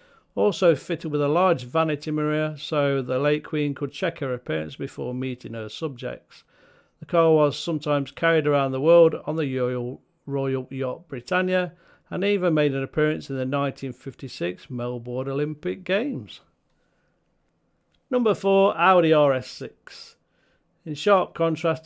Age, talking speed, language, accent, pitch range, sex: 50-69, 135 wpm, English, British, 130-165 Hz, male